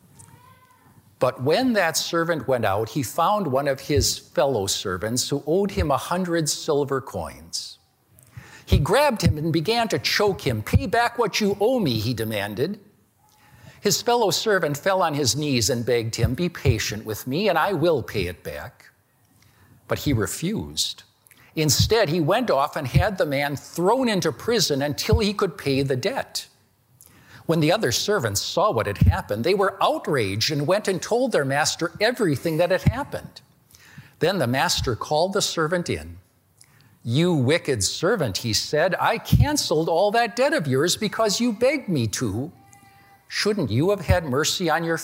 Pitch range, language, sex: 115-175 Hz, English, male